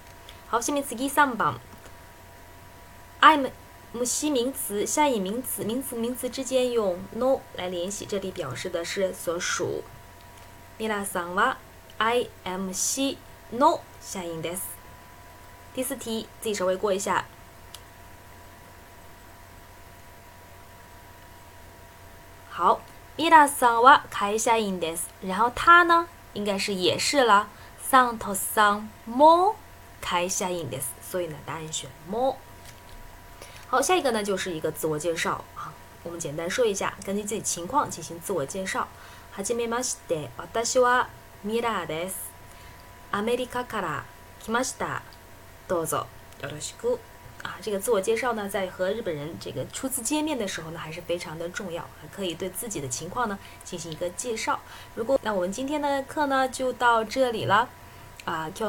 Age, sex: 20-39, female